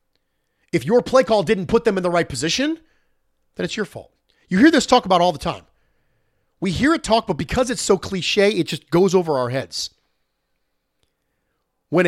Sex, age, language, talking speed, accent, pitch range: male, 40-59, English, 195 wpm, American, 135-210 Hz